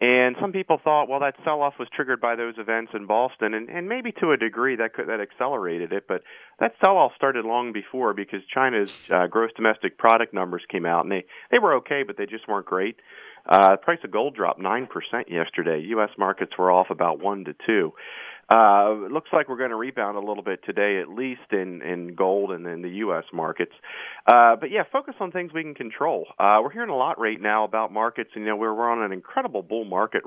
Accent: American